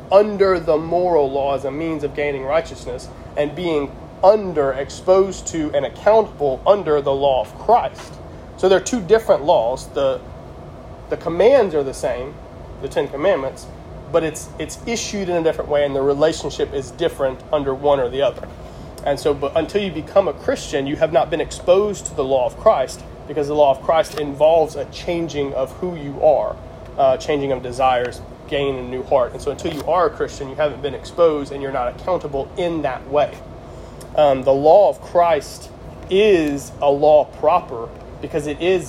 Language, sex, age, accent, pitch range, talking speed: English, male, 30-49, American, 135-175 Hz, 190 wpm